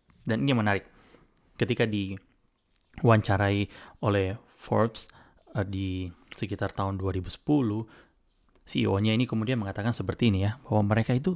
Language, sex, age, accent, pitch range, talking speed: Indonesian, male, 30-49, native, 100-120 Hz, 120 wpm